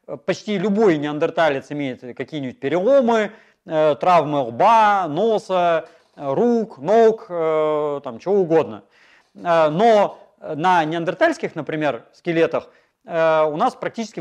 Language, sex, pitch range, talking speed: Russian, male, 150-205 Hz, 95 wpm